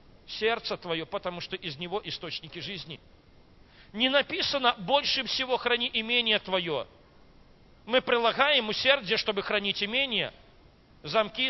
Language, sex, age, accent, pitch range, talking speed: Russian, male, 40-59, native, 195-265 Hz, 115 wpm